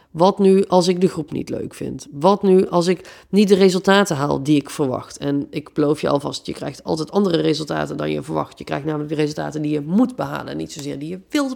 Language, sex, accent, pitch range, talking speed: Dutch, female, Dutch, 175-220 Hz, 250 wpm